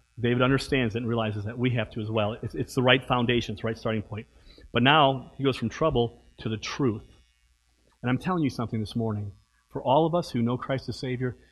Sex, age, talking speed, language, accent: male, 40-59, 240 wpm, English, American